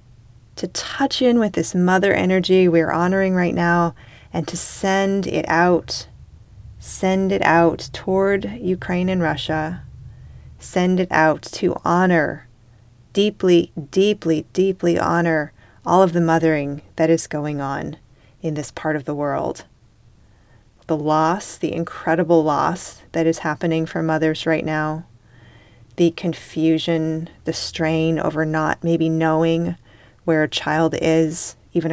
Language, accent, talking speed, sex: English, American, 135 wpm, female